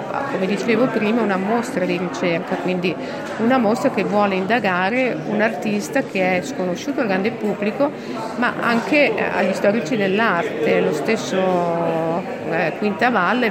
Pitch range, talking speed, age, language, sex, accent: 180-215 Hz, 135 wpm, 50-69, Italian, female, native